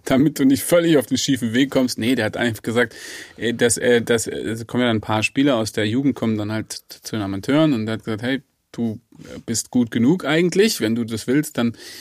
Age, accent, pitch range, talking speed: 30-49, German, 110-130 Hz, 230 wpm